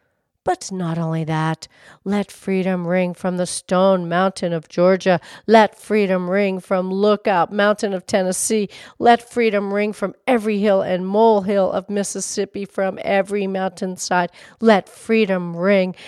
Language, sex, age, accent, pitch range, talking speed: English, female, 40-59, American, 185-220 Hz, 140 wpm